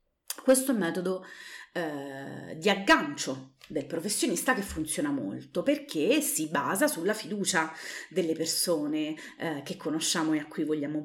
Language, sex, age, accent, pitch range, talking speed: Italian, female, 30-49, native, 155-200 Hz, 135 wpm